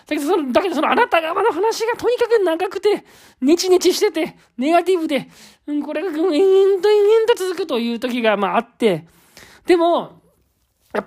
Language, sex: Japanese, male